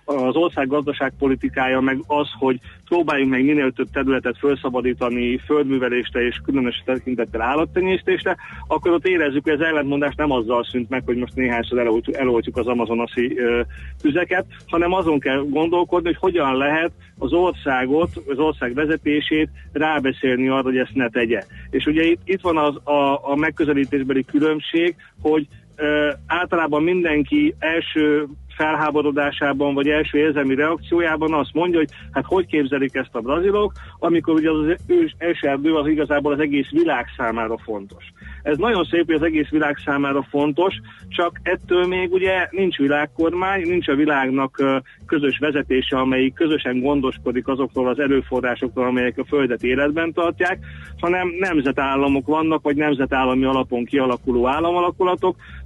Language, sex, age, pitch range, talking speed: Hungarian, male, 40-59, 130-160 Hz, 145 wpm